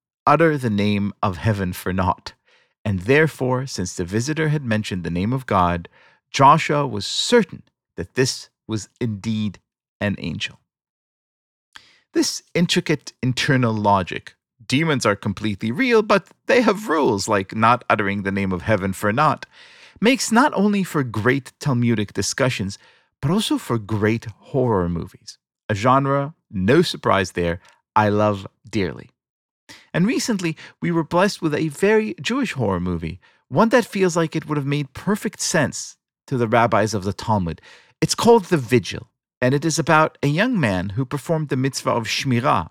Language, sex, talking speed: English, male, 160 wpm